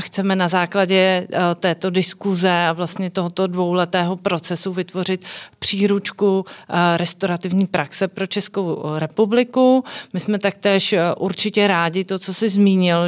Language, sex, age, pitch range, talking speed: Czech, female, 40-59, 180-200 Hz, 125 wpm